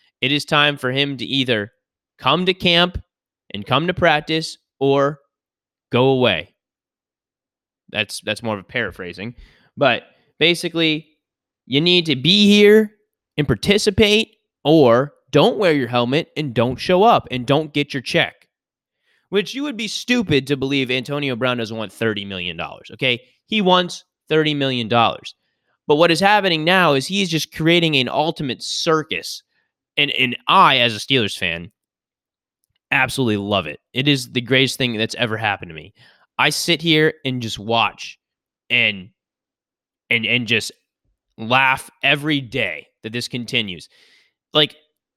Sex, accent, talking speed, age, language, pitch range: male, American, 150 wpm, 20-39, English, 125-170 Hz